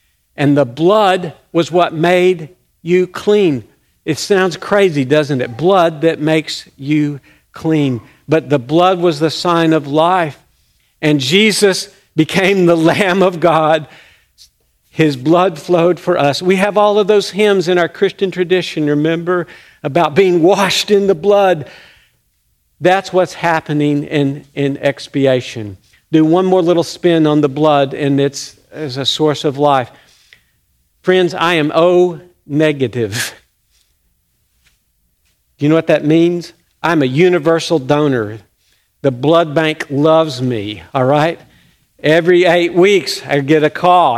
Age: 50-69